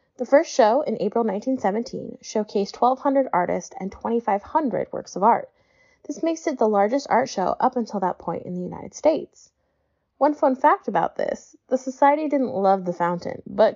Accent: American